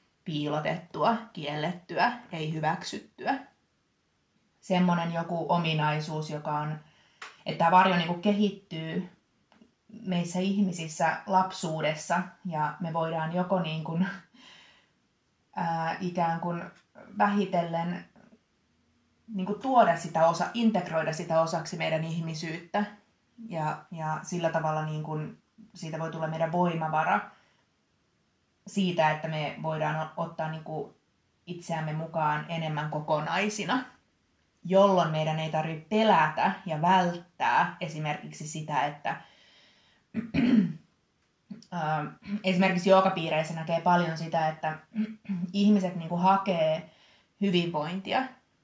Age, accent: 20-39, native